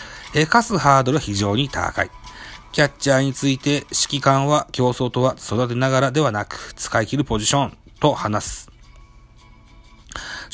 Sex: male